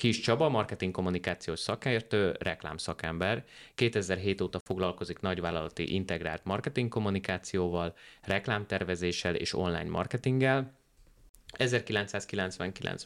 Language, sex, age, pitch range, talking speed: Hungarian, male, 30-49, 90-110 Hz, 75 wpm